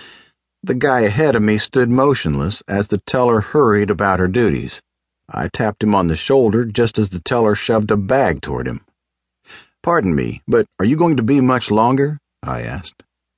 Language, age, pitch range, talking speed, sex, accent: English, 50-69, 90-120 Hz, 185 wpm, male, American